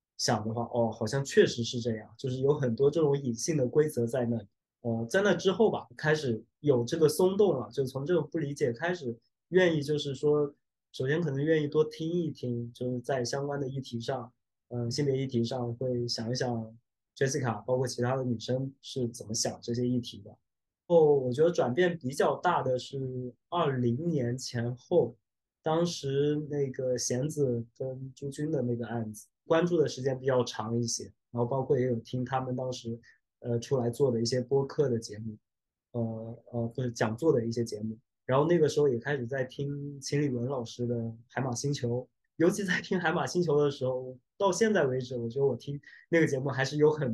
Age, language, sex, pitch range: 20-39, Chinese, male, 120-150 Hz